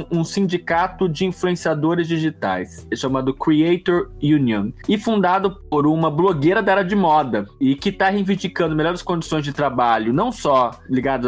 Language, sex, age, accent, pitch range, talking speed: Portuguese, male, 20-39, Brazilian, 130-165 Hz, 150 wpm